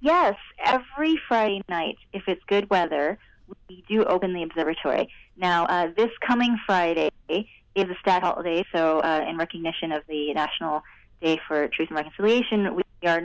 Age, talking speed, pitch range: 20-39, 165 wpm, 170-205 Hz